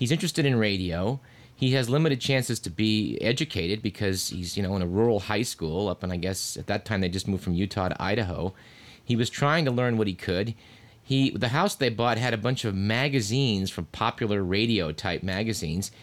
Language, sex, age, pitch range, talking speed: English, male, 30-49, 100-130 Hz, 215 wpm